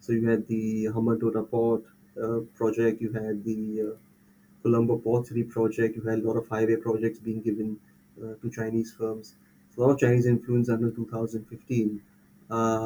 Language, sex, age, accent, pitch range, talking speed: English, male, 20-39, Indian, 105-115 Hz, 165 wpm